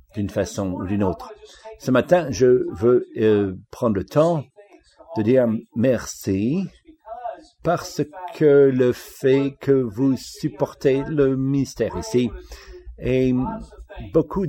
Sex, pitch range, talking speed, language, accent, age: male, 125-180 Hz, 115 wpm, English, French, 60-79